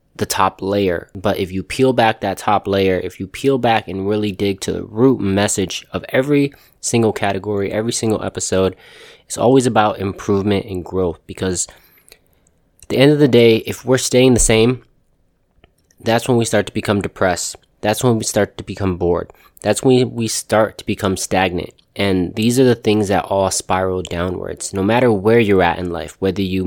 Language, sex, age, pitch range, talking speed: English, male, 20-39, 95-115 Hz, 195 wpm